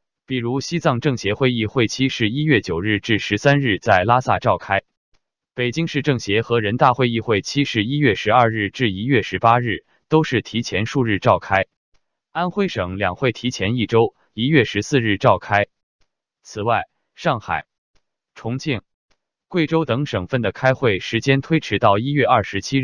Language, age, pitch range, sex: Chinese, 20-39, 110-140 Hz, male